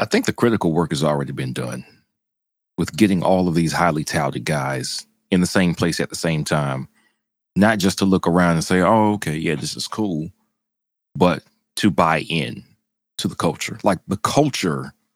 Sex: male